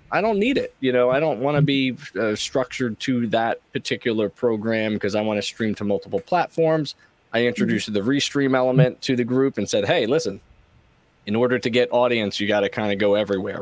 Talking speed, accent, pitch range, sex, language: 210 wpm, American, 105-135 Hz, male, English